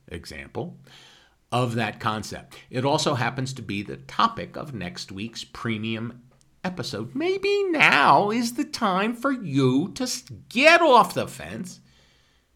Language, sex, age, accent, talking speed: English, male, 50-69, American, 135 wpm